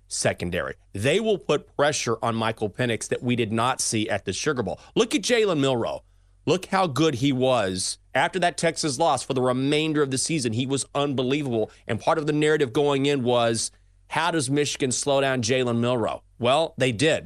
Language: English